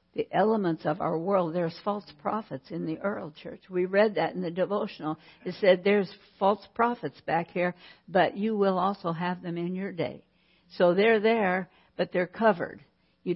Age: 60-79